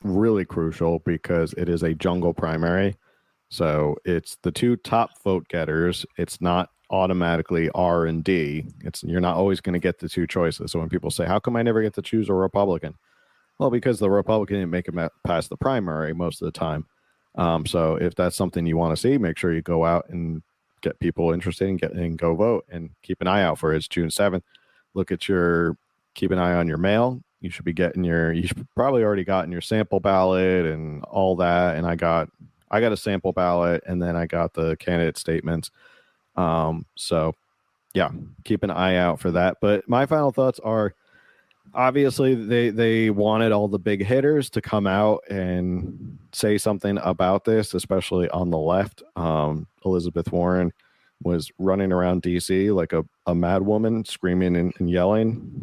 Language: English